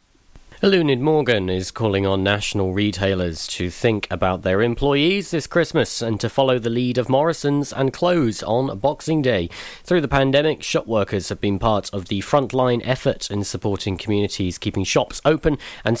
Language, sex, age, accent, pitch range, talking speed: English, male, 40-59, British, 100-135 Hz, 170 wpm